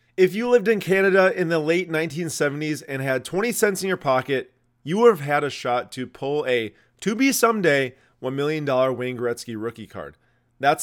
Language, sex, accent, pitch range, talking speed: English, male, American, 130-165 Hz, 195 wpm